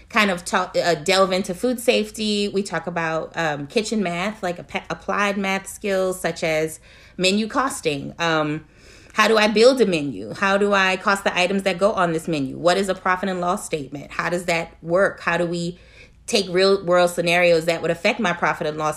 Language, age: English, 30-49